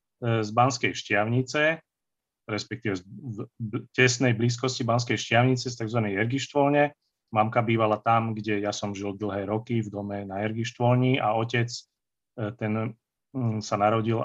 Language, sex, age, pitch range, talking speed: Slovak, male, 30-49, 105-125 Hz, 125 wpm